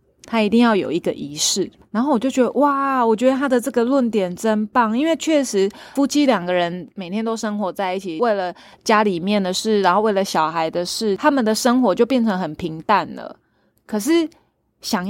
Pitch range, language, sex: 185-245 Hz, Chinese, female